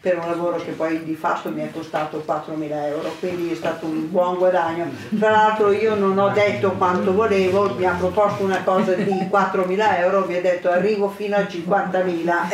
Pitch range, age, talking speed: 180-200 Hz, 50-69, 190 wpm